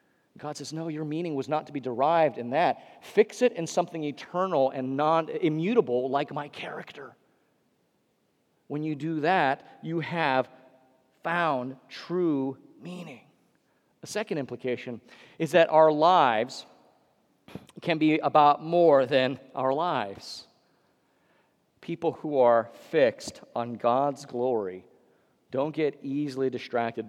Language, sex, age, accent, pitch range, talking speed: English, male, 40-59, American, 130-160 Hz, 125 wpm